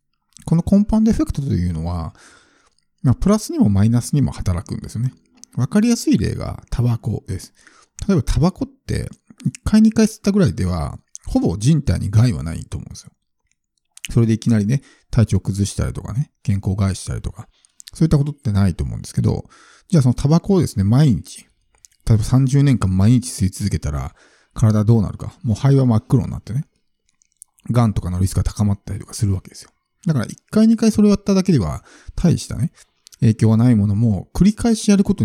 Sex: male